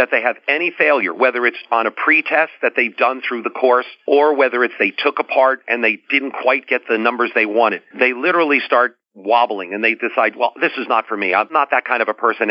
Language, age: English, 50-69